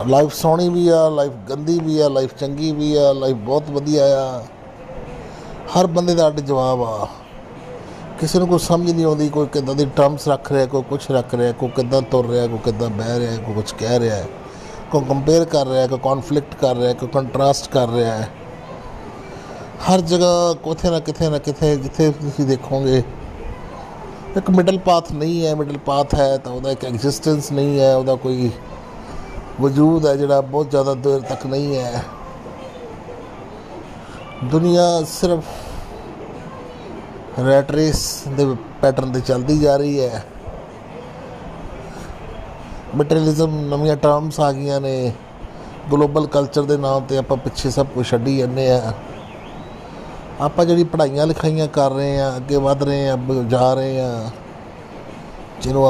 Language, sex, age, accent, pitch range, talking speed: Hindi, male, 30-49, native, 130-150 Hz, 145 wpm